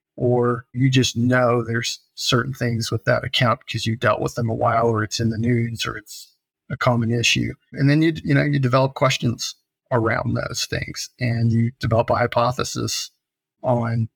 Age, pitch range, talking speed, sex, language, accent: 30-49, 115-125 Hz, 185 wpm, male, English, American